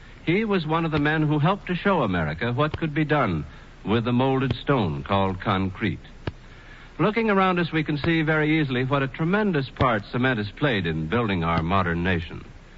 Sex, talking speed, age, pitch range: male, 190 wpm, 60-79, 120-160 Hz